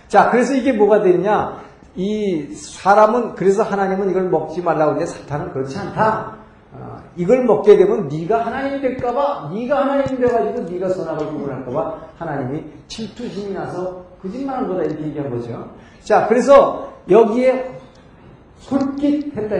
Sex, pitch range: male, 160-225 Hz